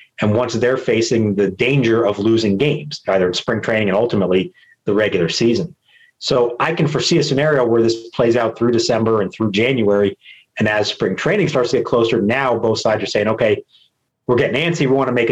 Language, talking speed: English, 210 wpm